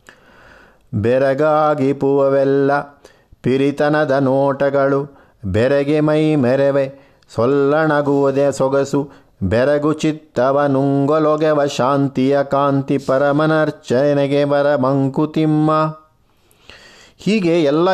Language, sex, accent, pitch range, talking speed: Kannada, male, native, 130-155 Hz, 65 wpm